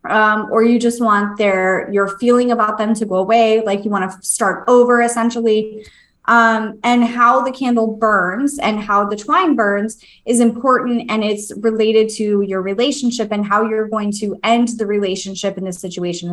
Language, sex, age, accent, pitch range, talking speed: English, female, 20-39, American, 195-235 Hz, 185 wpm